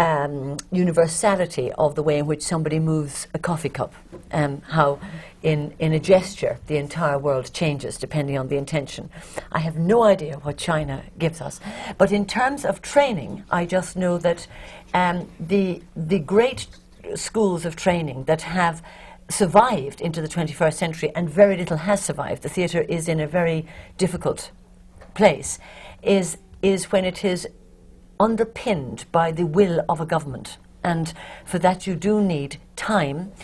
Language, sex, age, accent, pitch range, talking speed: English, female, 60-79, British, 150-185 Hz, 160 wpm